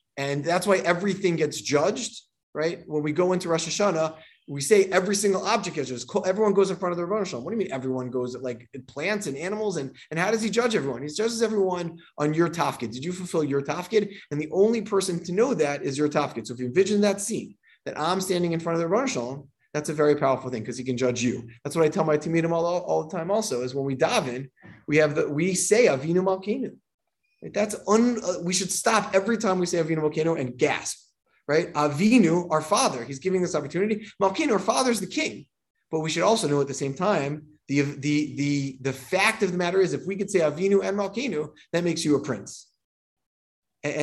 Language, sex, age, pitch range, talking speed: English, male, 30-49, 140-195 Hz, 230 wpm